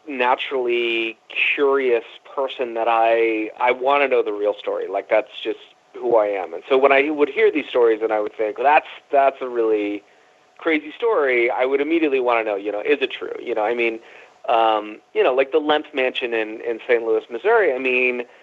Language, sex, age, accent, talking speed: English, male, 30-49, American, 210 wpm